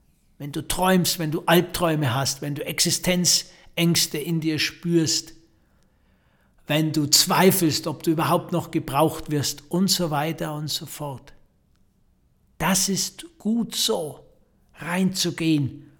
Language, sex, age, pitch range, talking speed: German, male, 60-79, 160-195 Hz, 125 wpm